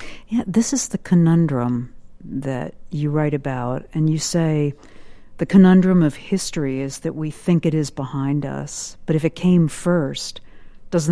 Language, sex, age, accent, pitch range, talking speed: English, female, 50-69, American, 130-160 Hz, 160 wpm